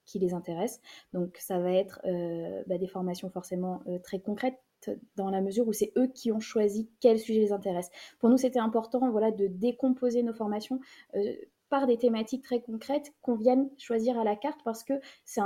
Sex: female